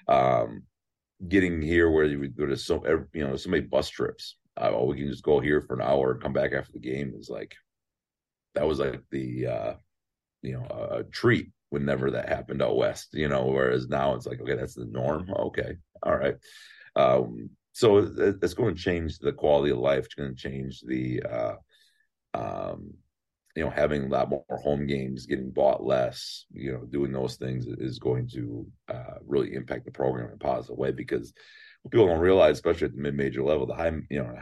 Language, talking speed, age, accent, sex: English, 205 wpm, 40-59, American, male